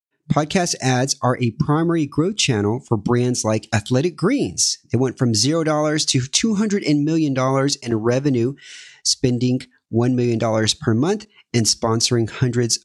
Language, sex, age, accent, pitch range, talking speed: English, male, 40-59, American, 120-160 Hz, 135 wpm